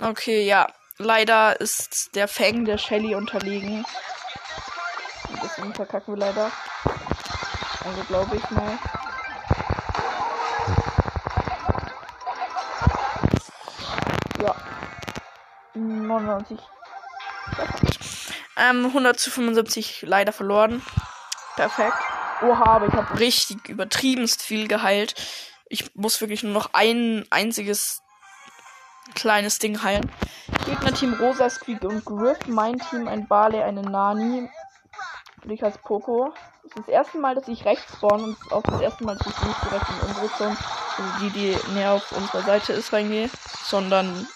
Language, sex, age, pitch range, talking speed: German, female, 20-39, 200-230 Hz, 125 wpm